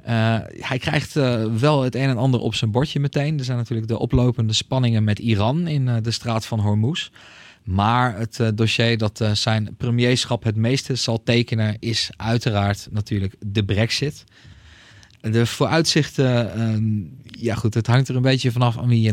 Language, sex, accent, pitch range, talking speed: Dutch, male, Dutch, 110-130 Hz, 180 wpm